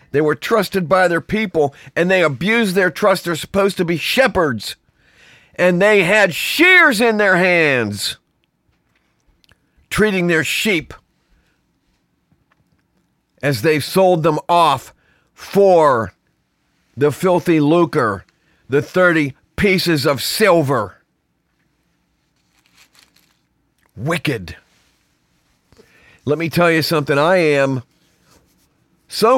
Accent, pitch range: American, 140-180 Hz